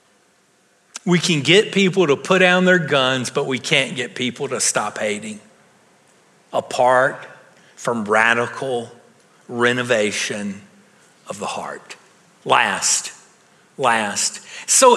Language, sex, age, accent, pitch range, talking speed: English, male, 50-69, American, 170-220 Hz, 110 wpm